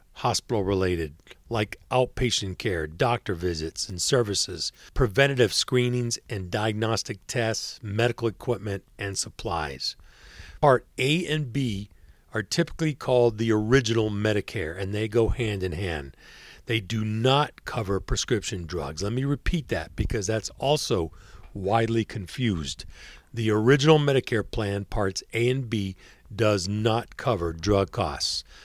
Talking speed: 130 wpm